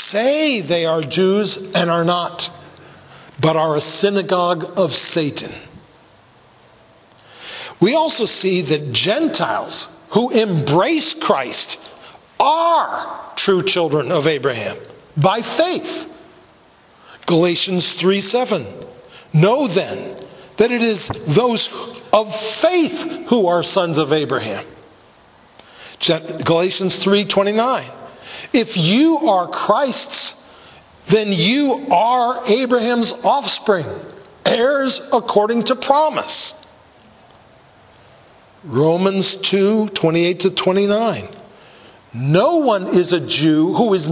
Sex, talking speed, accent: male, 95 wpm, American